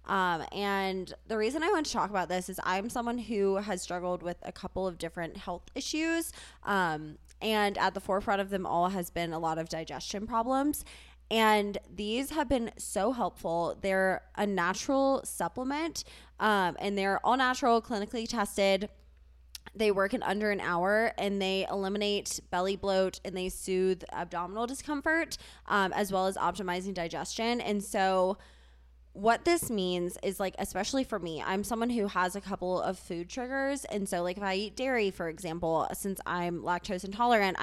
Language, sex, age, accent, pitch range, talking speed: English, female, 20-39, American, 180-225 Hz, 175 wpm